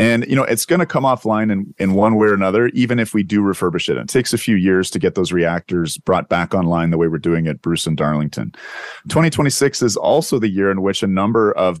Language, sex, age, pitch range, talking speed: English, male, 30-49, 90-115 Hz, 255 wpm